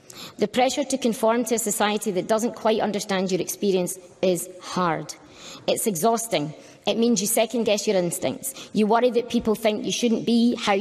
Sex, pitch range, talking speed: female, 190-230 Hz, 180 wpm